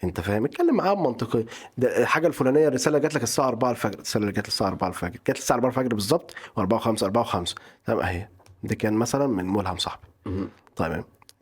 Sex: male